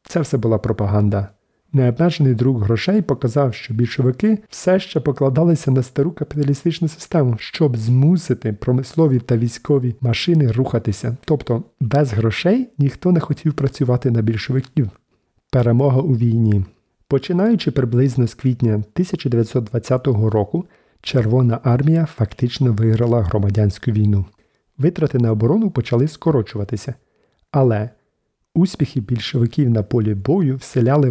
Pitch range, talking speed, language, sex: 115-150 Hz, 115 wpm, Ukrainian, male